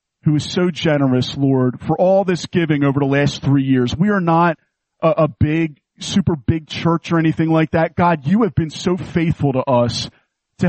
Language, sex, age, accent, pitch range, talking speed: English, male, 40-59, American, 140-175 Hz, 200 wpm